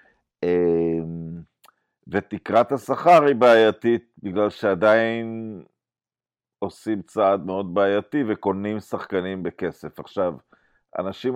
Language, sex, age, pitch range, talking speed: Hebrew, male, 50-69, 95-130 Hz, 80 wpm